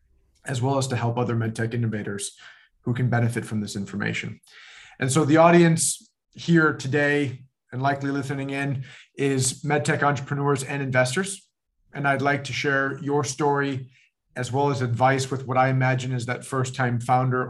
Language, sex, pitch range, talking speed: English, male, 125-145 Hz, 165 wpm